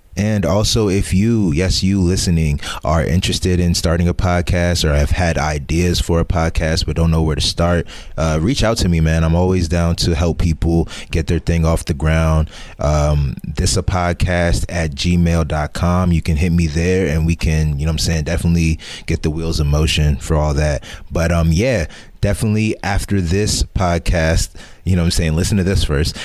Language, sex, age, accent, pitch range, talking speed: English, male, 20-39, American, 80-90 Hz, 205 wpm